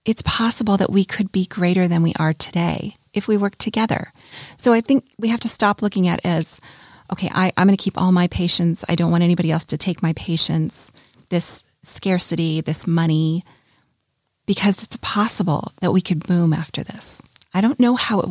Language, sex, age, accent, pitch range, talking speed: English, female, 30-49, American, 165-205 Hz, 200 wpm